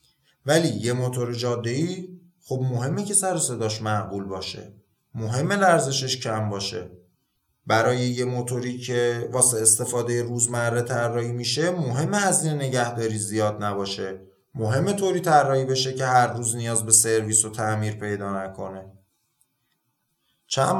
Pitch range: 115-170 Hz